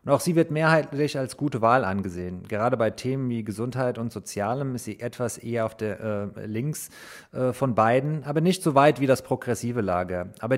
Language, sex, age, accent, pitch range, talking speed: German, male, 30-49, German, 110-140 Hz, 205 wpm